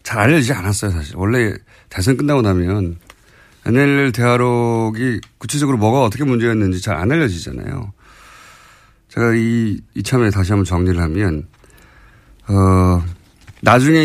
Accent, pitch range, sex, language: native, 100-140 Hz, male, Korean